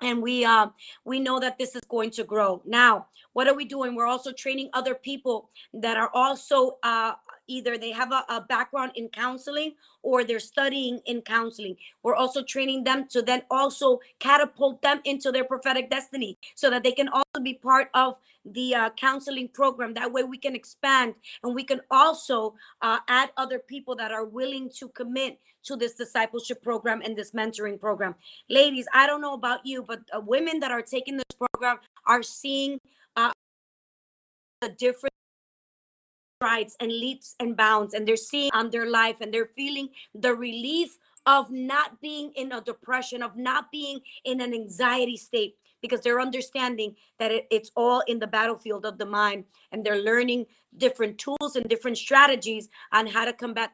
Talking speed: 180 wpm